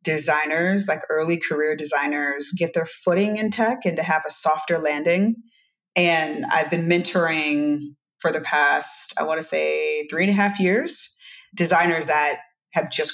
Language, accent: English, American